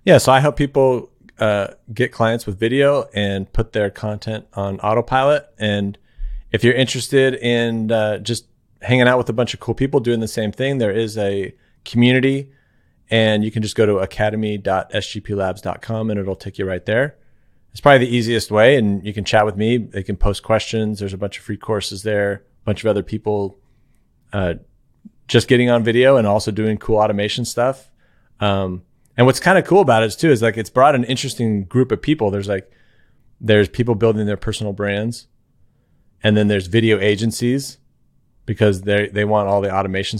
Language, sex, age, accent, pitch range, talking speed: English, male, 30-49, American, 105-125 Hz, 190 wpm